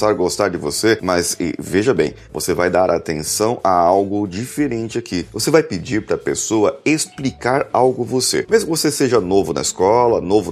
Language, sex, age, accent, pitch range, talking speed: Portuguese, male, 30-49, Brazilian, 105-150 Hz, 175 wpm